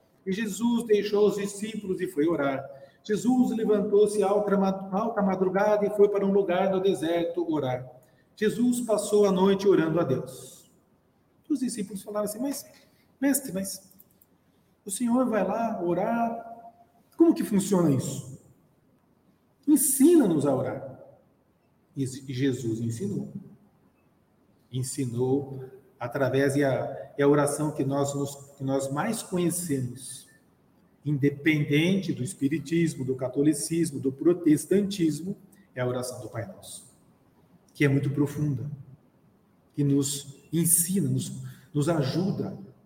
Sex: male